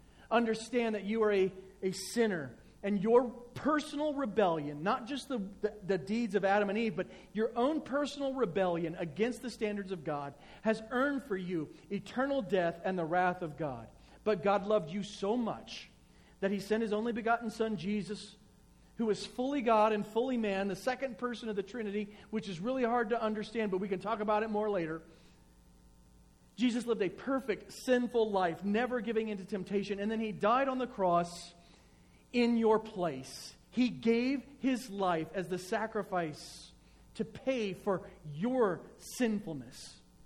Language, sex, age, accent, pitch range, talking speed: English, male, 40-59, American, 180-230 Hz, 170 wpm